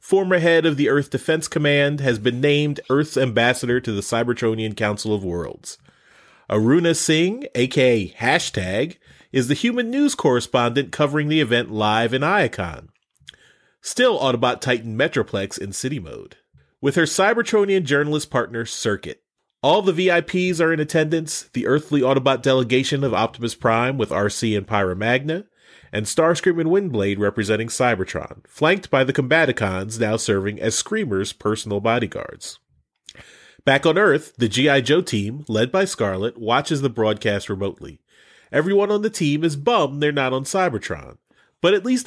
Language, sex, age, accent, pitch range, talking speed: English, male, 30-49, American, 110-155 Hz, 150 wpm